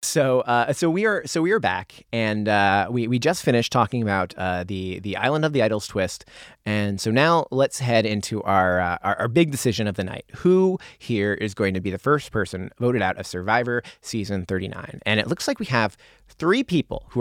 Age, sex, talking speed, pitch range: 30-49, male, 225 wpm, 100-135 Hz